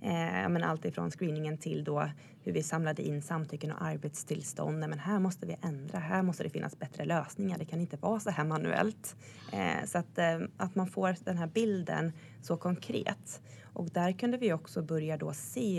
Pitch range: 150-180 Hz